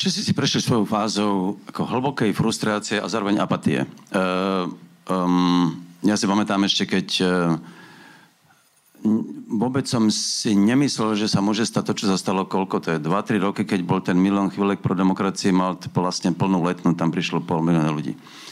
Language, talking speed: Slovak, 165 wpm